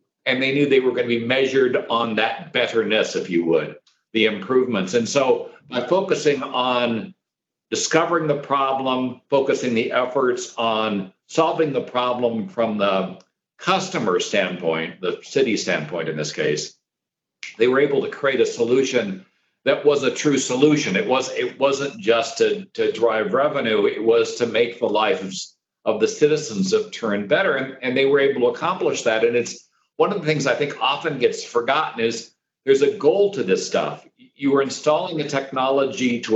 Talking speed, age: 180 wpm, 60-79